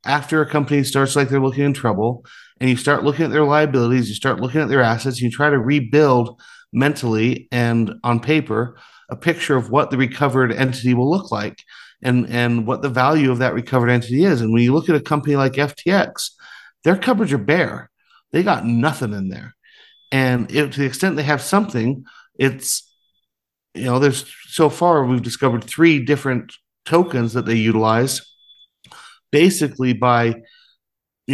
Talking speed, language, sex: 175 wpm, English, male